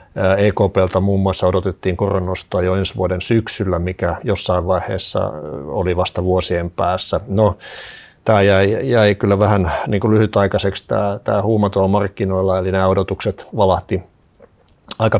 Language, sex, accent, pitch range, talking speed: Finnish, male, native, 95-110 Hz, 130 wpm